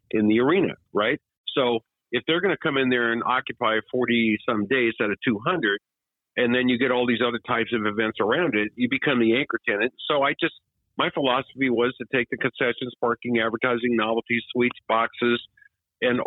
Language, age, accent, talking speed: English, 50-69, American, 190 wpm